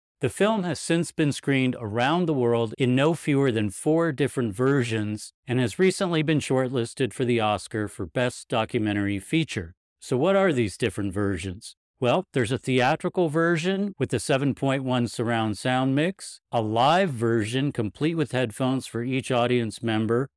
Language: English